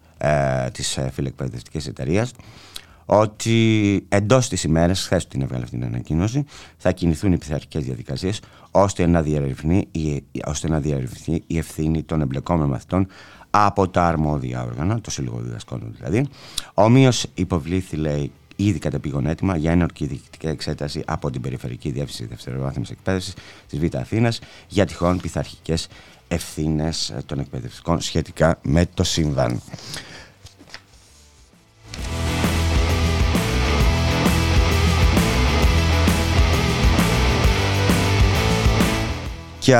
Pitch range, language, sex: 75-100 Hz, Greek, male